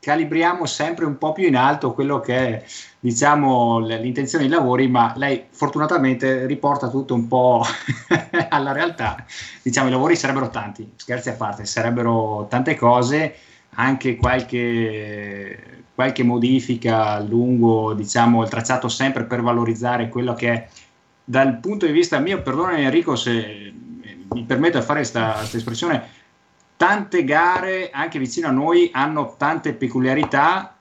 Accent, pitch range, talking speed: native, 115-140 Hz, 140 wpm